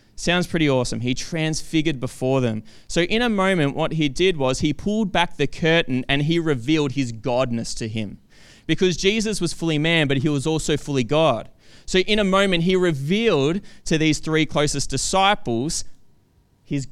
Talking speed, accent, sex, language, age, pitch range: 175 wpm, Australian, male, English, 20-39, 130-170 Hz